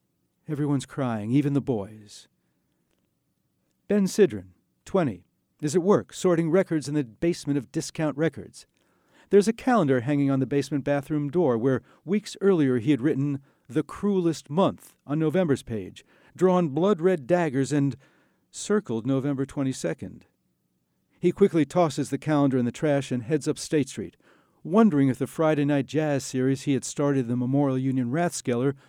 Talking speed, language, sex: 155 wpm, English, male